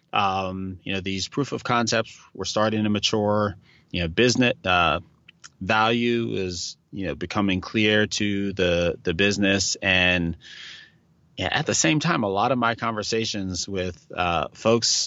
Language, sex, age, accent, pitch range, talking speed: English, male, 30-49, American, 90-110 Hz, 155 wpm